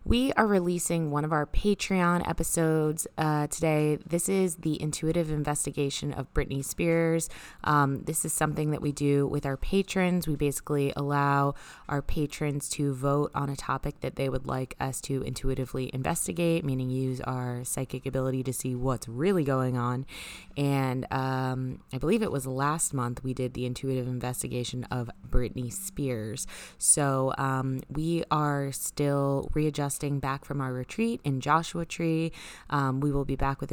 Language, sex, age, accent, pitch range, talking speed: English, female, 20-39, American, 135-160 Hz, 165 wpm